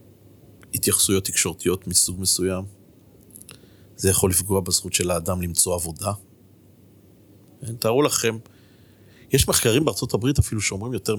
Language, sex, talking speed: Hebrew, male, 105 wpm